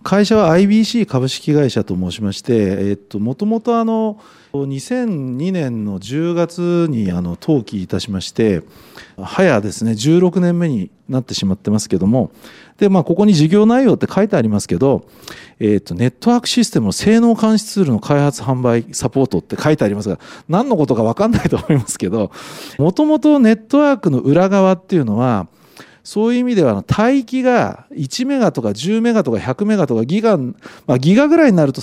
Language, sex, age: Japanese, male, 40-59